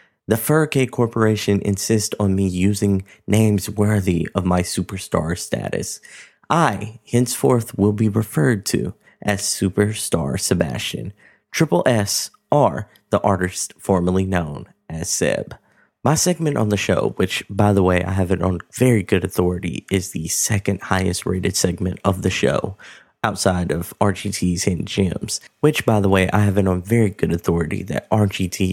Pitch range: 95-115 Hz